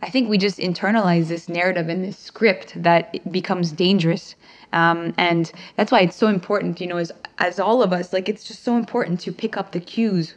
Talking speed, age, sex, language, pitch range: 220 wpm, 20-39, female, English, 170-200 Hz